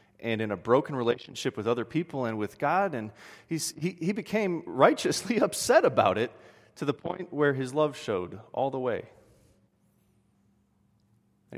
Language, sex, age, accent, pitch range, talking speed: English, male, 30-49, American, 105-125 Hz, 160 wpm